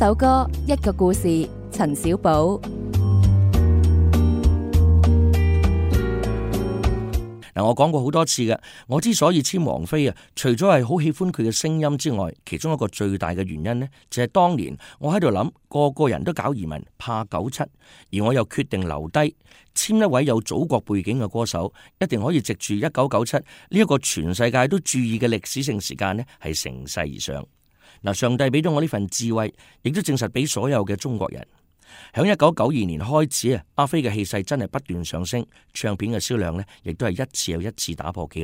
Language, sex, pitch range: Chinese, male, 85-140 Hz